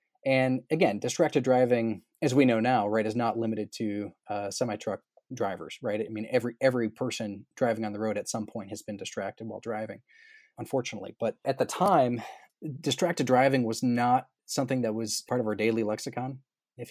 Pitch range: 110-130 Hz